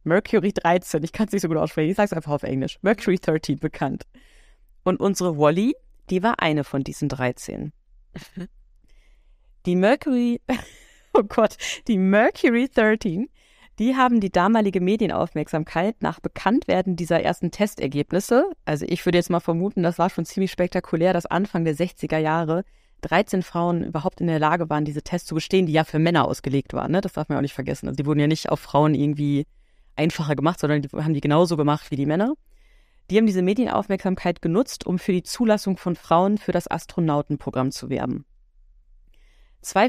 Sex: female